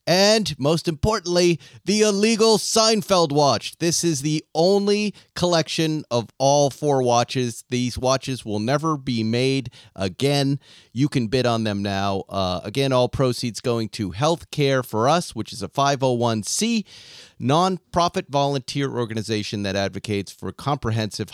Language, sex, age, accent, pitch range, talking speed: English, male, 30-49, American, 110-155 Hz, 140 wpm